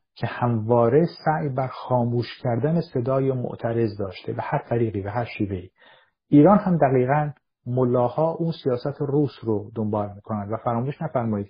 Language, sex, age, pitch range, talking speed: Persian, male, 50-69, 110-145 Hz, 150 wpm